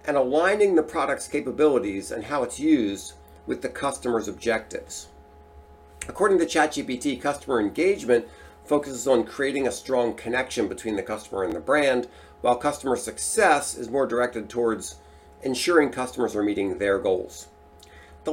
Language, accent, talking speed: English, American, 145 wpm